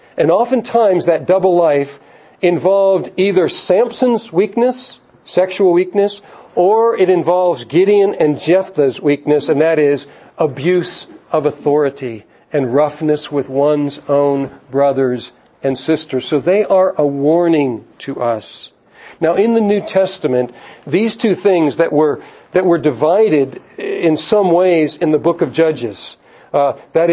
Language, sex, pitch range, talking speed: English, male, 150-200 Hz, 135 wpm